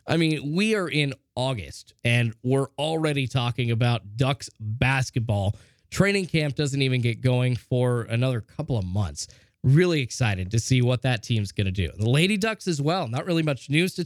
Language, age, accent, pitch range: English, 20-39, American, 125-165 Hz